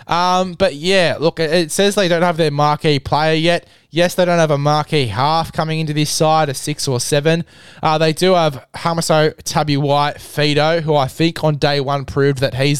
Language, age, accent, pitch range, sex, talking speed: English, 20-39, Australian, 140-170 Hz, male, 210 wpm